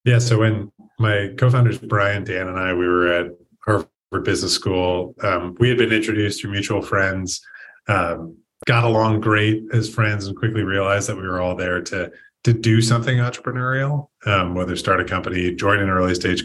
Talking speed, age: 185 wpm, 30-49